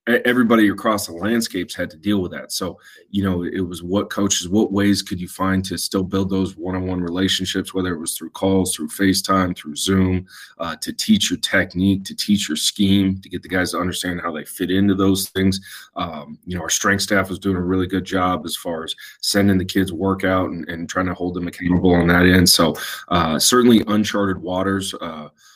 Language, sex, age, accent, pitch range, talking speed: English, male, 30-49, American, 85-95 Hz, 220 wpm